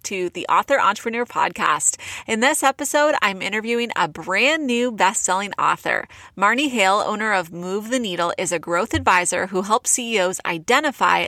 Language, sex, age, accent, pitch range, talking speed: English, female, 20-39, American, 185-245 Hz, 165 wpm